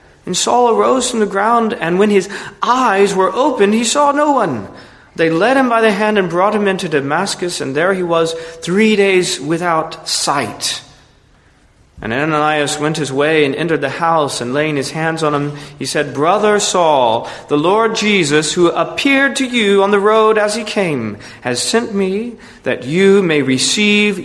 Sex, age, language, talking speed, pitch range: male, 40-59, English, 185 wpm, 125-195 Hz